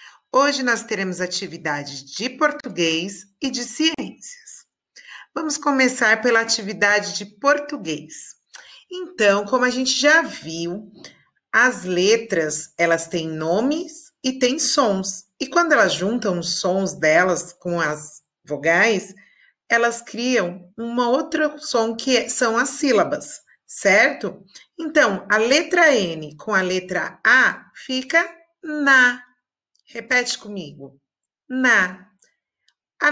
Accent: Brazilian